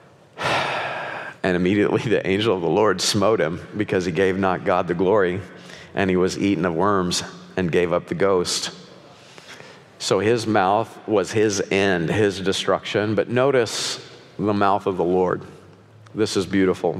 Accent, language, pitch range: American, English, 95-120 Hz